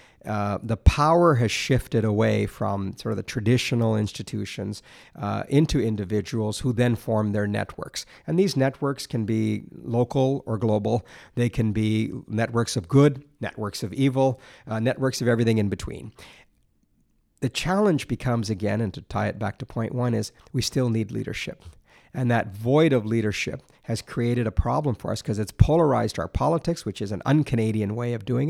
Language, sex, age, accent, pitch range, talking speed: English, male, 50-69, American, 110-135 Hz, 175 wpm